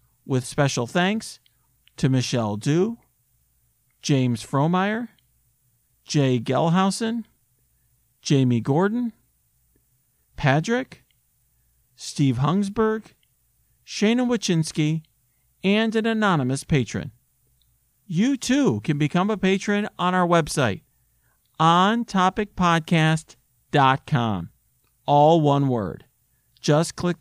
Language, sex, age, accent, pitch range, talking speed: English, male, 40-59, American, 125-185 Hz, 80 wpm